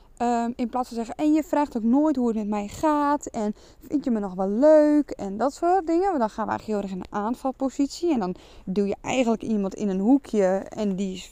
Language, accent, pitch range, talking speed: Dutch, Dutch, 205-260 Hz, 240 wpm